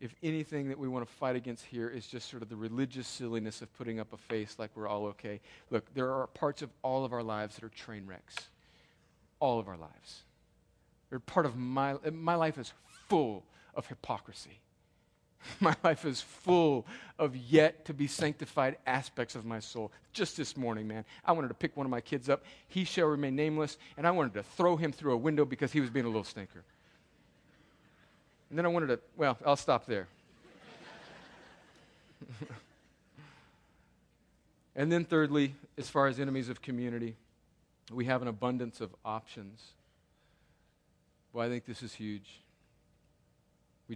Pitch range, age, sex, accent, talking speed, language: 110-145 Hz, 40-59, male, American, 175 wpm, English